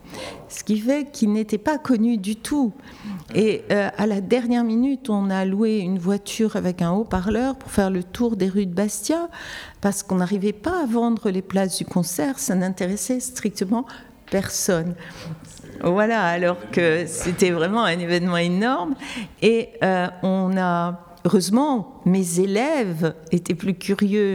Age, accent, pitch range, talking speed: 60-79, French, 175-220 Hz, 155 wpm